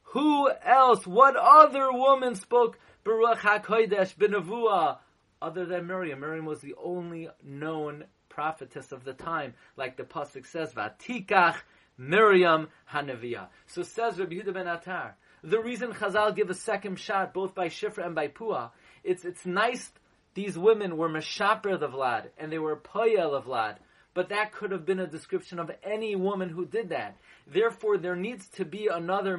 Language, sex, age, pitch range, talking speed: English, male, 30-49, 155-210 Hz, 165 wpm